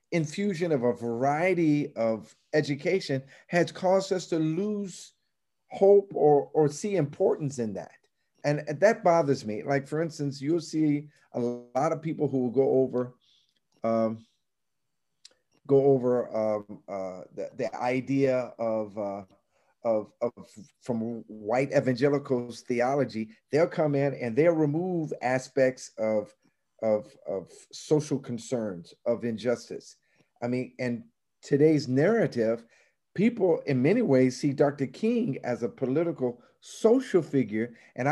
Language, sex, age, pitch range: English, male, 40-59, 125-170 Hz